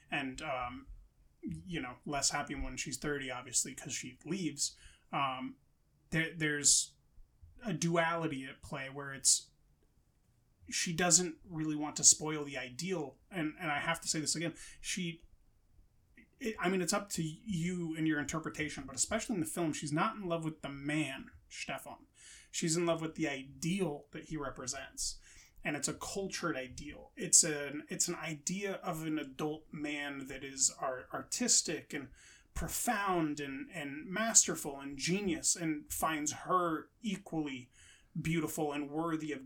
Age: 30-49